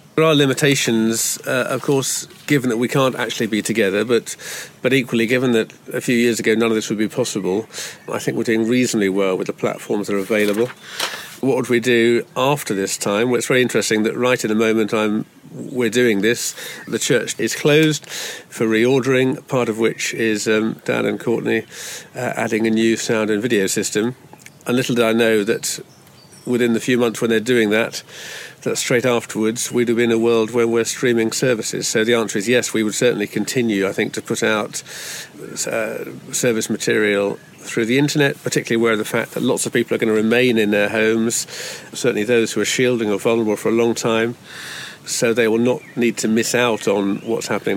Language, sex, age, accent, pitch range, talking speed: English, male, 50-69, British, 110-125 Hz, 210 wpm